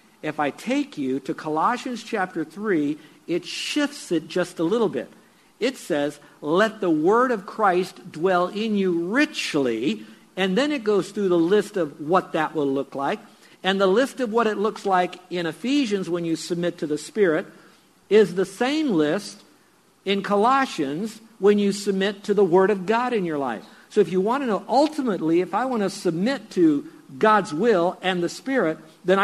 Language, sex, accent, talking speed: English, male, American, 185 wpm